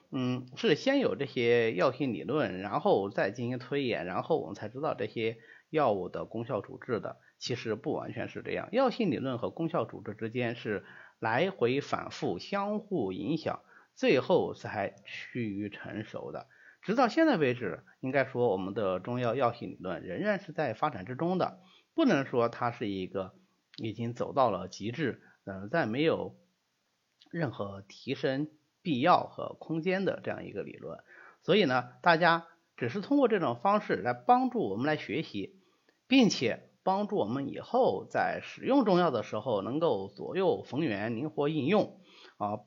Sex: male